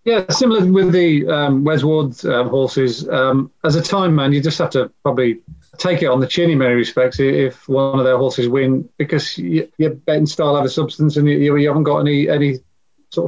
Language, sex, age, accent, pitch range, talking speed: English, male, 40-59, British, 125-145 Hz, 215 wpm